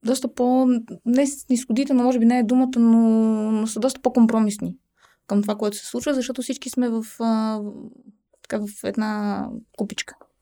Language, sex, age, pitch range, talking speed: Bulgarian, female, 20-39, 200-235 Hz, 155 wpm